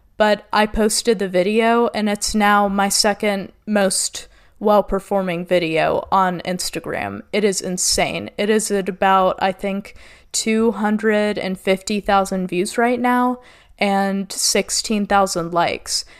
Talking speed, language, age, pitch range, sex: 115 wpm, English, 20-39, 190-215 Hz, female